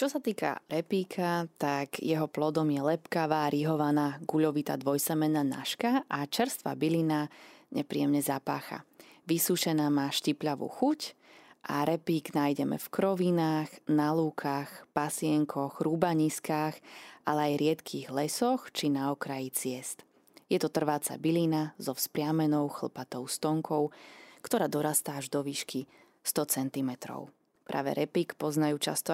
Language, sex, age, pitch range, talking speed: Slovak, female, 20-39, 145-170 Hz, 120 wpm